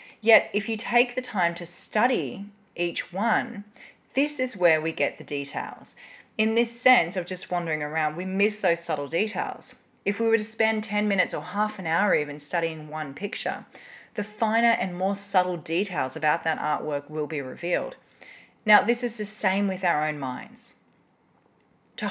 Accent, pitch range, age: Australian, 155-220 Hz, 30-49